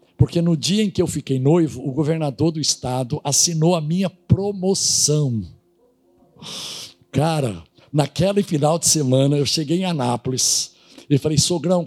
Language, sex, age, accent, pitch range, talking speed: Portuguese, male, 60-79, Brazilian, 130-170 Hz, 140 wpm